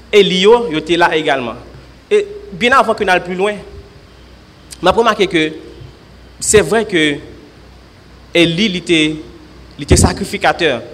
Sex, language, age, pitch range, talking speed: male, French, 30-49, 150-205 Hz, 120 wpm